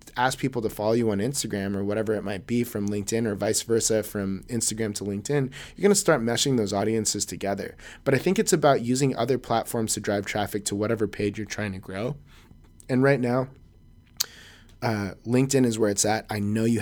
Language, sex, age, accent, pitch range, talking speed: English, male, 20-39, American, 100-125 Hz, 210 wpm